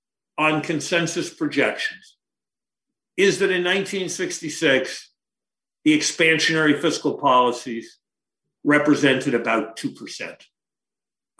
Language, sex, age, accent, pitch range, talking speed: English, male, 50-69, American, 140-180 Hz, 75 wpm